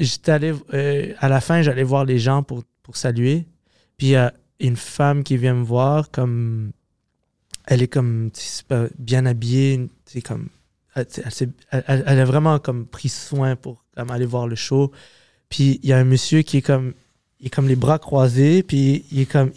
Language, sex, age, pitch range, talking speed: French, male, 20-39, 125-150 Hz, 220 wpm